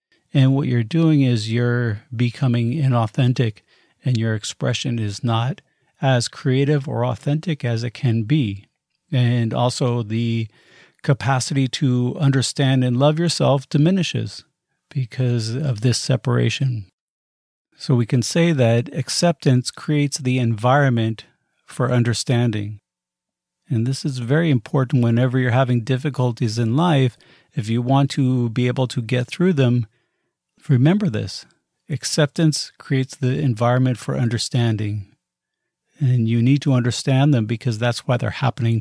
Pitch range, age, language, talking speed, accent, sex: 120-145 Hz, 40-59, English, 135 wpm, American, male